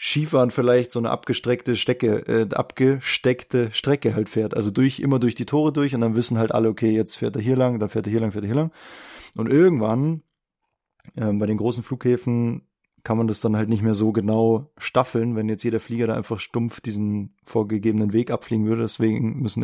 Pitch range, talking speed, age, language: 110-125 Hz, 210 wpm, 20-39, German